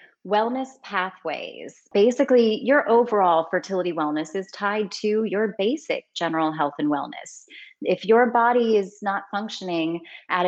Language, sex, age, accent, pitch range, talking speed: English, female, 30-49, American, 185-240 Hz, 130 wpm